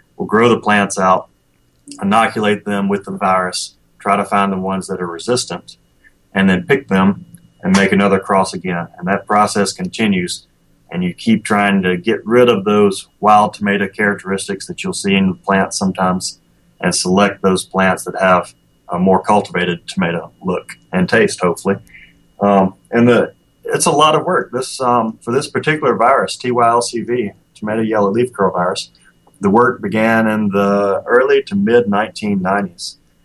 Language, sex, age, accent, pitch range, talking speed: English, male, 30-49, American, 95-120 Hz, 165 wpm